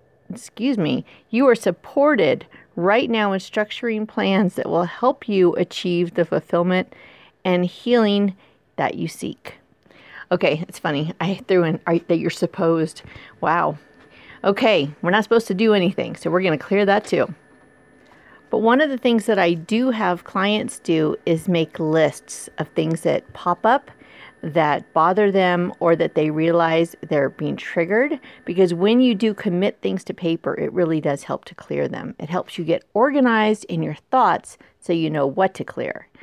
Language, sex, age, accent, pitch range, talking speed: English, female, 40-59, American, 165-215 Hz, 175 wpm